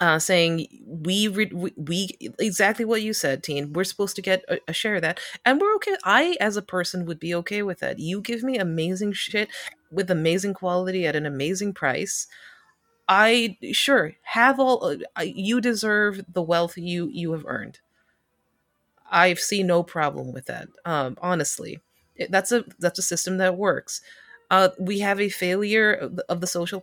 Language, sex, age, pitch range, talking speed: English, female, 30-49, 165-210 Hz, 180 wpm